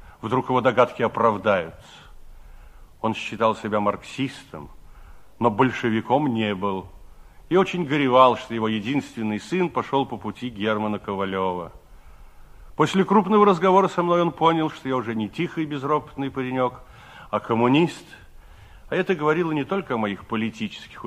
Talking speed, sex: 140 wpm, male